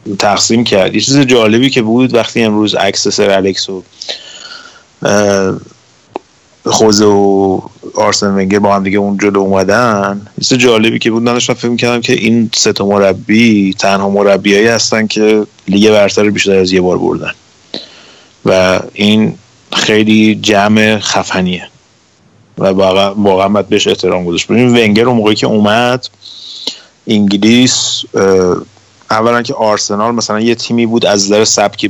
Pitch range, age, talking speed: 100-110 Hz, 30-49, 125 wpm